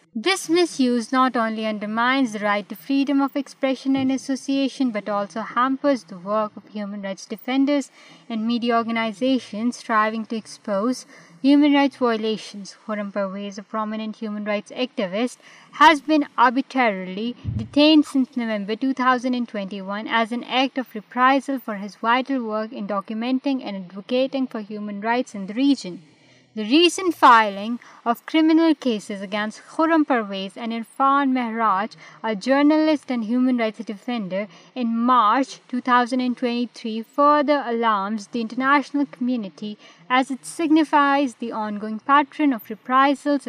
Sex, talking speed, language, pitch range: female, 135 wpm, Urdu, 215-270 Hz